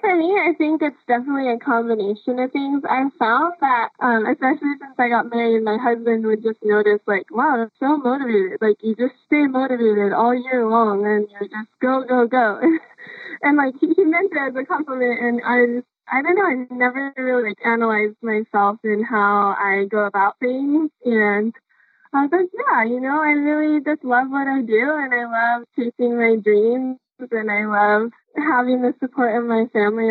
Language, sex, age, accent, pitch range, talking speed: English, female, 10-29, American, 215-260 Hz, 195 wpm